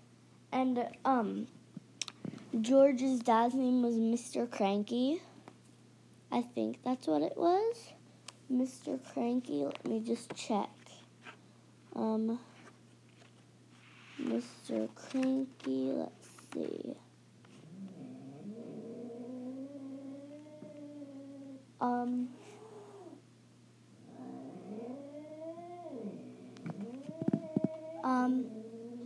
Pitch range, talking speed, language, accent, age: 215-290 Hz, 55 wpm, English, American, 20-39